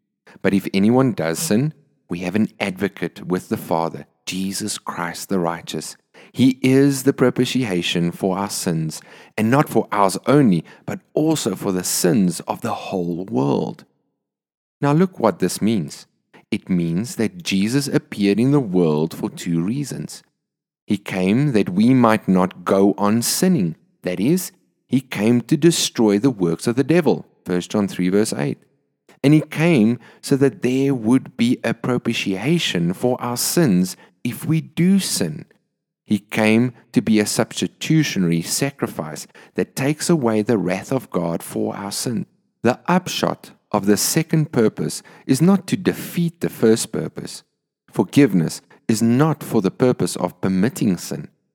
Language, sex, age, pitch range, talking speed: English, male, 30-49, 95-150 Hz, 155 wpm